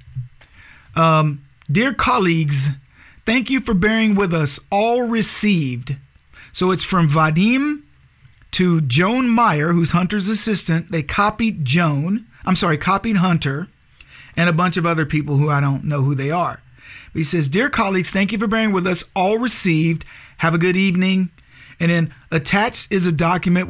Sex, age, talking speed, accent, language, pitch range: male, 50-69, 160 wpm, American, English, 155-195 Hz